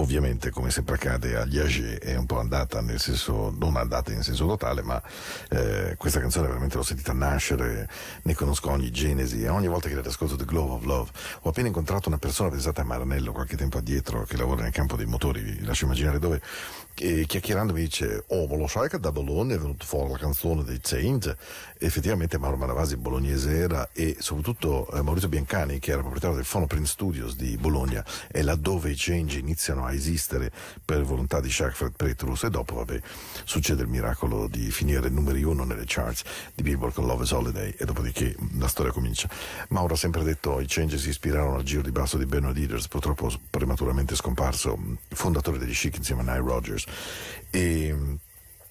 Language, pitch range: Spanish, 65-80 Hz